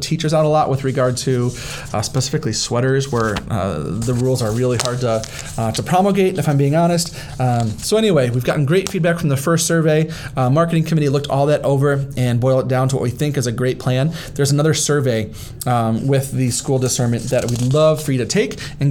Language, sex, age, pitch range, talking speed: English, male, 30-49, 125-155 Hz, 225 wpm